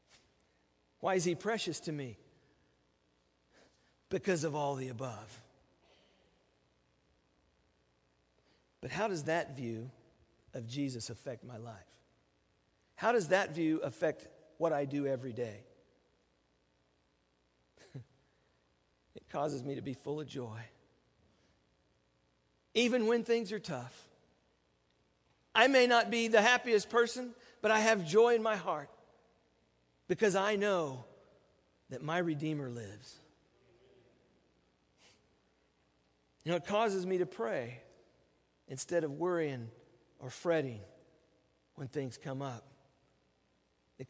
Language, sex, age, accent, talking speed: English, male, 50-69, American, 110 wpm